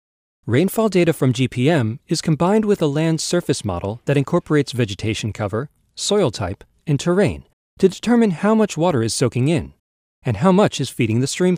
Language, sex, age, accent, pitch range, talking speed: English, male, 40-59, American, 115-170 Hz, 175 wpm